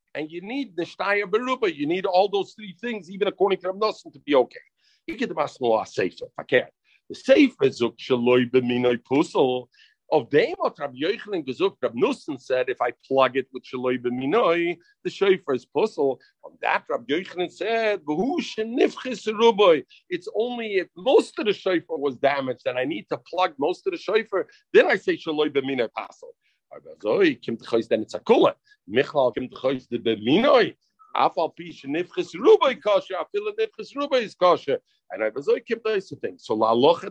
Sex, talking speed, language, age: male, 165 wpm, English, 50-69